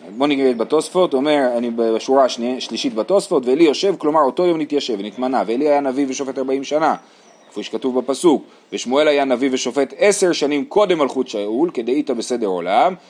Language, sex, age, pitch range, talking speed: Hebrew, male, 30-49, 130-185 Hz, 165 wpm